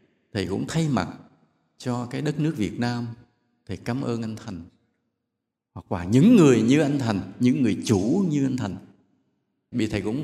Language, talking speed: Vietnamese, 180 wpm